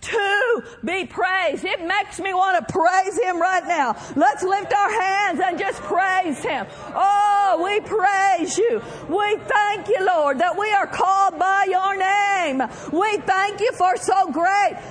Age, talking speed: 50-69, 165 wpm